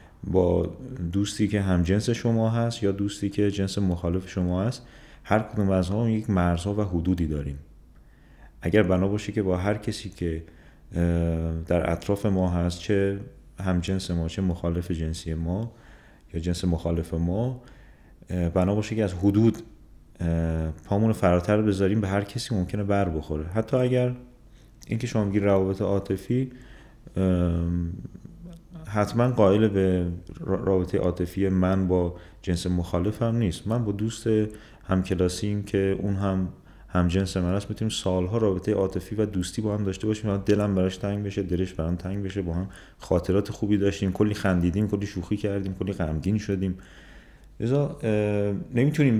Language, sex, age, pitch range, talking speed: Persian, male, 30-49, 90-105 Hz, 150 wpm